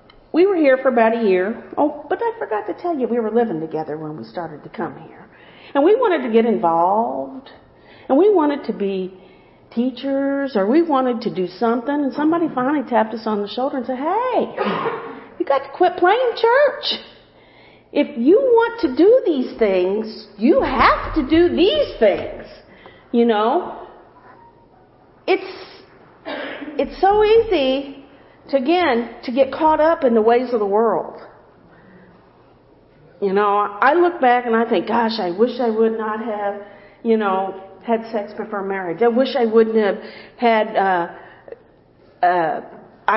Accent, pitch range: American, 205-305 Hz